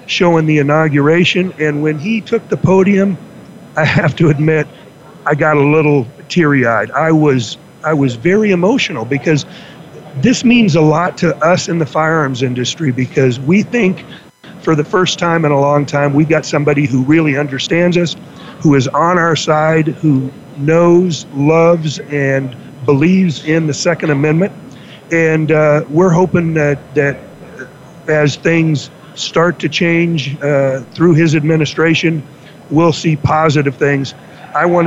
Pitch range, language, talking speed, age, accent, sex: 145-165 Hz, English, 150 wpm, 50-69, American, male